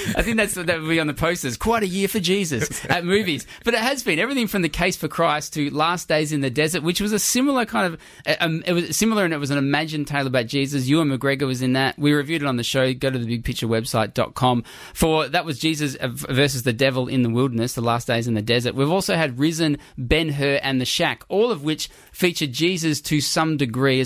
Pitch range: 135-170 Hz